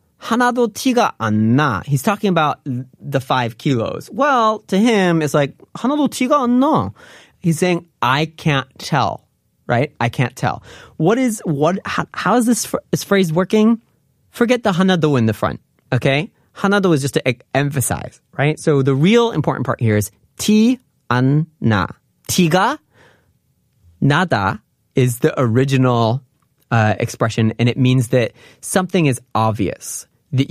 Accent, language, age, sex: American, Korean, 30-49, male